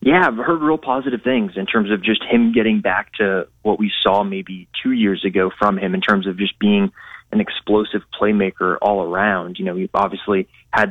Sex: male